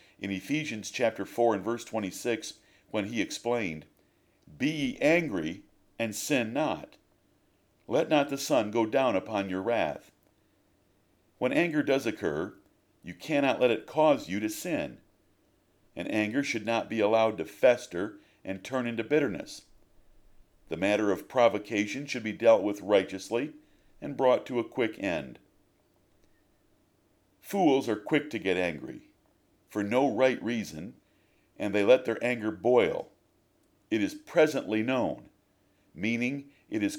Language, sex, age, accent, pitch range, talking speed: English, male, 50-69, American, 100-135 Hz, 140 wpm